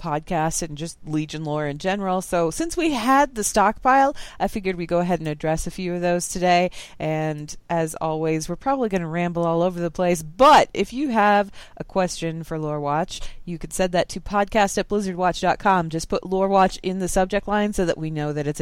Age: 30-49